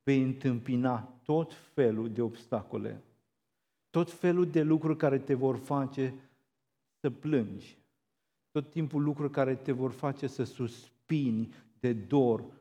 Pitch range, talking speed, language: 115-140 Hz, 130 wpm, Romanian